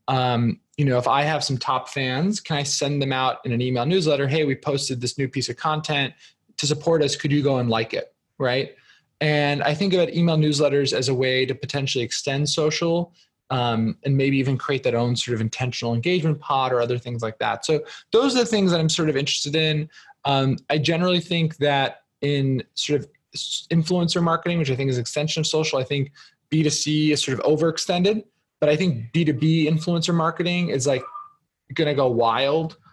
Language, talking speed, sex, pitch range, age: English, 210 wpm, male, 125-155 Hz, 20-39